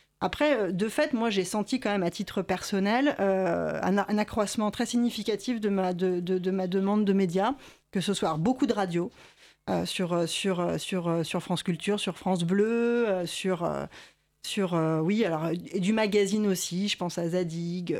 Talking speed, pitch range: 185 wpm, 180-210 Hz